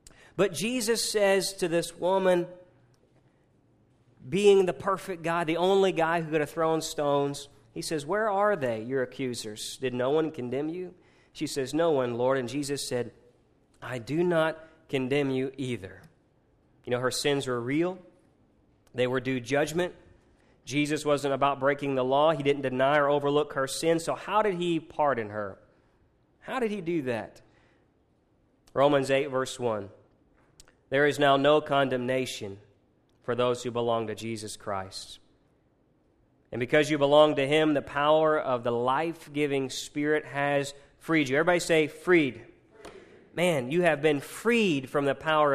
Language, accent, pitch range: English, American, 135-180 Hz